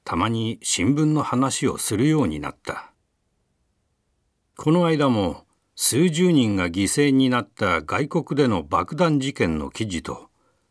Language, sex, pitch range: Japanese, male, 100-140 Hz